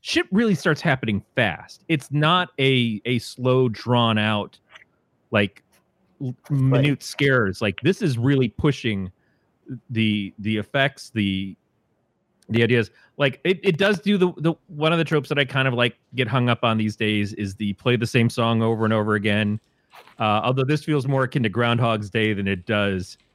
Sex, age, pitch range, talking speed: male, 30-49, 110-145 Hz, 175 wpm